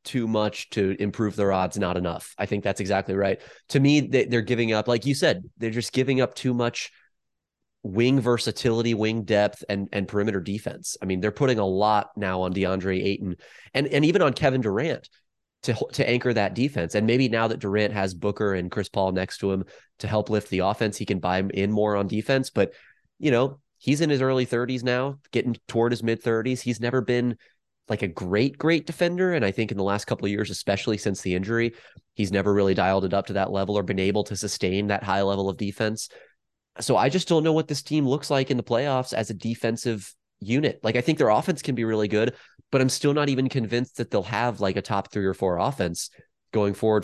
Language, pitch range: English, 100-125 Hz